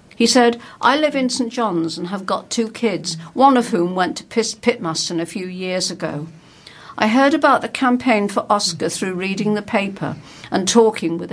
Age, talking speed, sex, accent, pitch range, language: 50-69, 190 wpm, female, British, 170-230 Hz, English